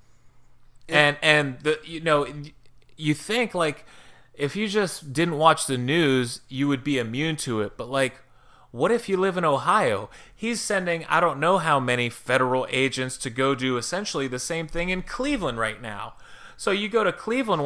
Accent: American